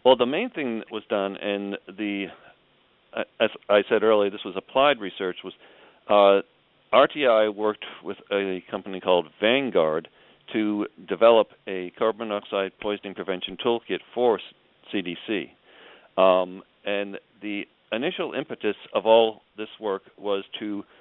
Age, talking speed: 50-69, 135 wpm